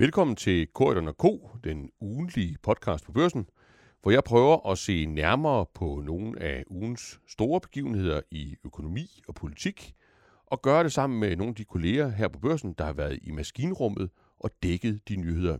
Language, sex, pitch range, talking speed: Danish, male, 80-120 Hz, 175 wpm